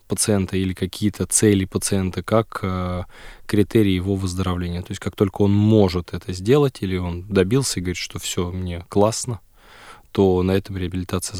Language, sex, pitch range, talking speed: Russian, male, 90-105 Hz, 165 wpm